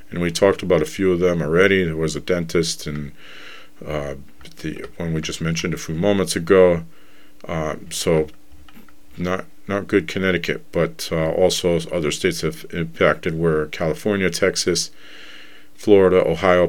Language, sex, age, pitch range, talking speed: English, male, 40-59, 80-95 Hz, 150 wpm